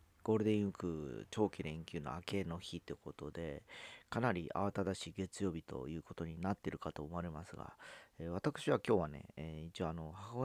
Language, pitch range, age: Japanese, 80-100 Hz, 40-59